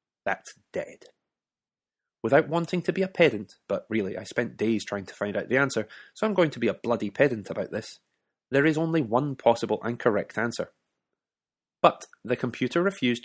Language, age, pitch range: English, 20-39, 110-160 Hz